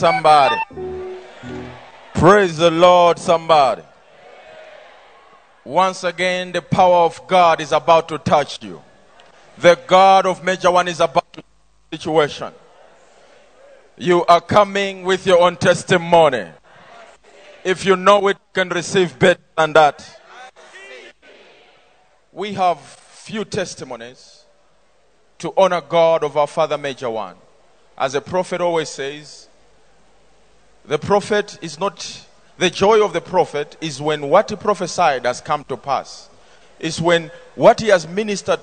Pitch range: 155-185 Hz